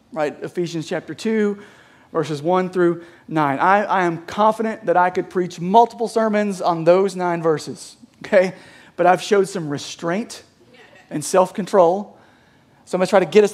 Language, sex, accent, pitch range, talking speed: English, male, American, 165-210 Hz, 165 wpm